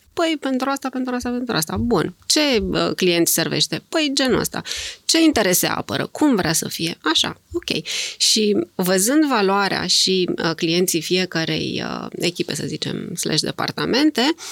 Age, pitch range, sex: 30-49, 200-270 Hz, female